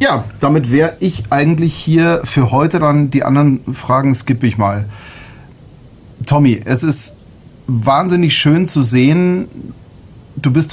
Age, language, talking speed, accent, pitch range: 40-59, German, 135 wpm, German, 120-145 Hz